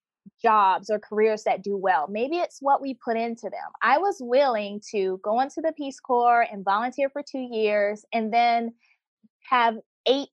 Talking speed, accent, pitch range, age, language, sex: 180 wpm, American, 205-275 Hz, 20-39, English, female